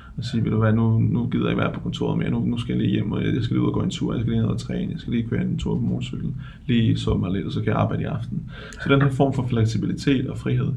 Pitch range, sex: 110-130 Hz, male